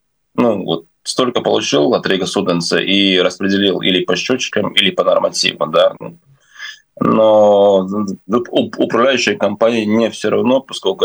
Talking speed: 125 wpm